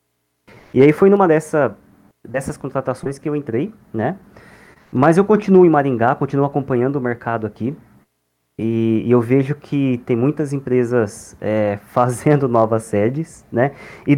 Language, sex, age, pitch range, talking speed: Portuguese, male, 20-39, 110-145 Hz, 150 wpm